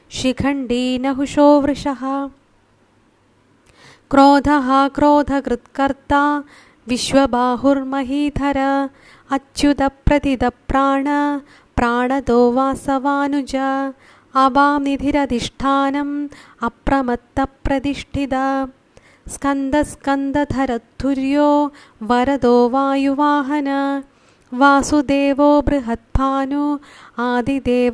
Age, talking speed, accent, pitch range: 20-39, 30 wpm, native, 270-285 Hz